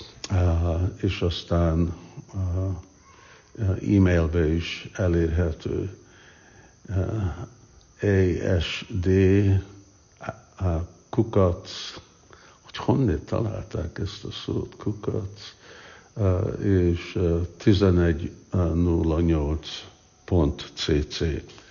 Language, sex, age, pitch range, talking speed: Hungarian, male, 60-79, 85-105 Hz, 60 wpm